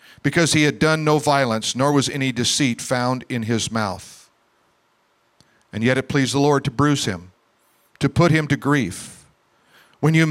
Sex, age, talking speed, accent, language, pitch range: male, 50-69, 175 wpm, American, English, 115-155 Hz